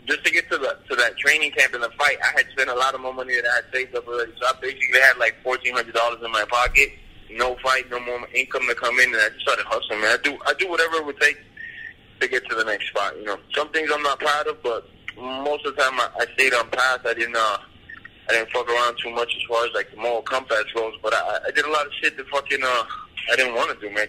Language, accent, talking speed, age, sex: English, American, 290 wpm, 20-39, male